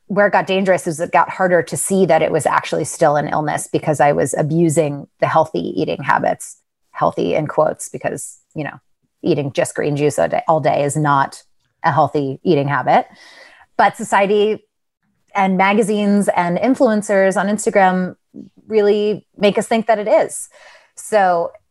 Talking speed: 165 wpm